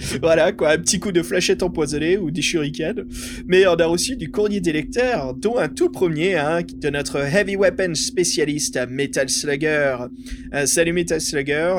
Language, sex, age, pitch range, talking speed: French, male, 30-49, 140-185 Hz, 180 wpm